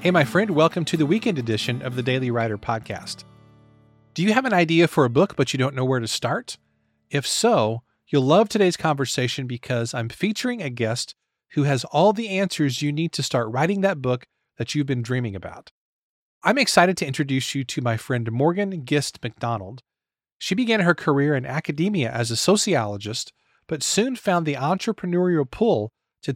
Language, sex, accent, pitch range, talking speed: English, male, American, 125-180 Hz, 190 wpm